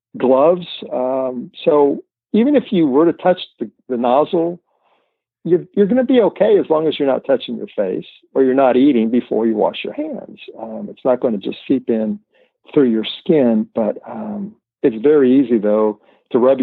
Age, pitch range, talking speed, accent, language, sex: 60-79, 125-195 Hz, 195 wpm, American, English, male